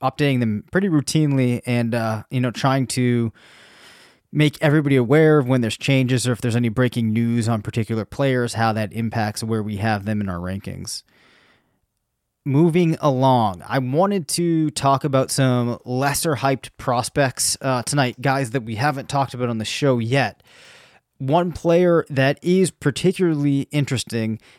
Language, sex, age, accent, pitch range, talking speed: English, male, 20-39, American, 120-145 Hz, 160 wpm